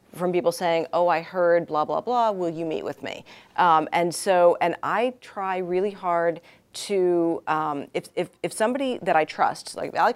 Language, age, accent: English, 40-59, American